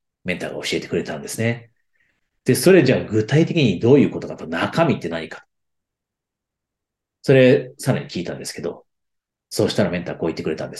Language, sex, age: Japanese, male, 40-59